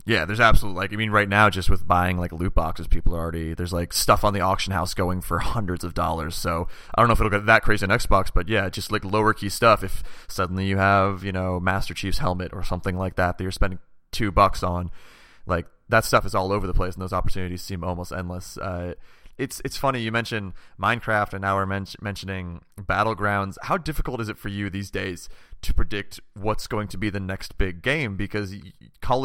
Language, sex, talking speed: English, male, 230 wpm